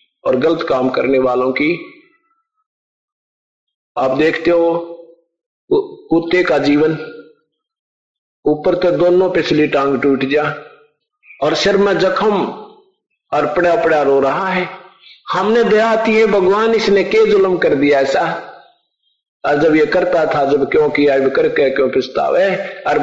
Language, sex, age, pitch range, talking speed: Hindi, male, 50-69, 170-215 Hz, 130 wpm